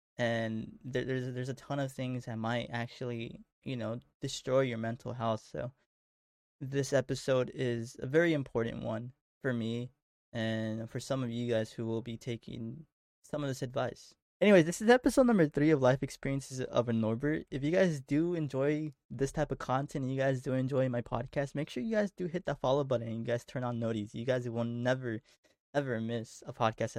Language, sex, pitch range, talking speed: English, male, 115-145 Hz, 200 wpm